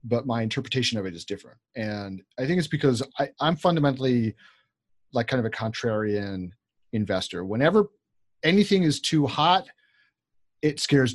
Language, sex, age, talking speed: English, male, 30-49, 150 wpm